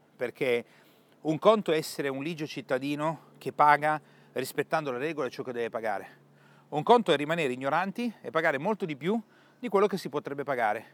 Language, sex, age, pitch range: Italian, male, 40-59, 135-180 Hz